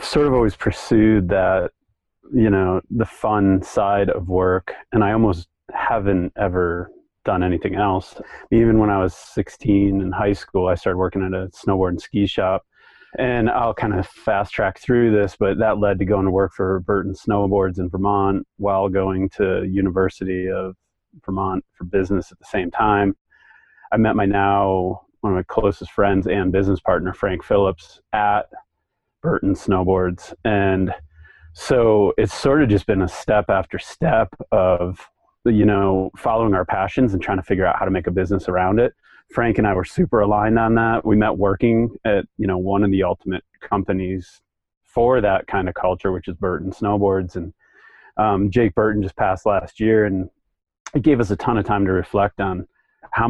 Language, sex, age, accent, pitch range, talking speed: English, male, 30-49, American, 95-105 Hz, 185 wpm